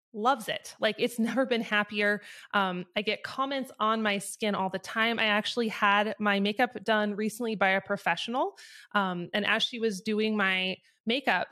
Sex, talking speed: female, 180 wpm